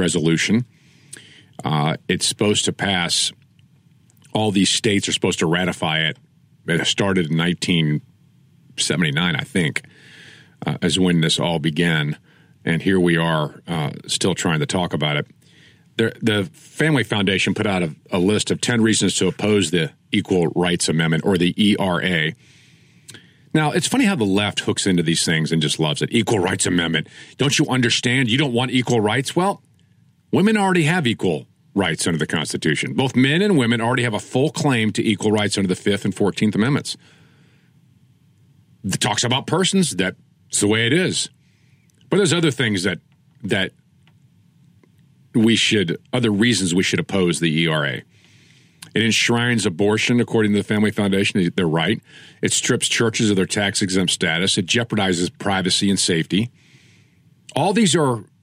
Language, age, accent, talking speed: English, 50-69, American, 165 wpm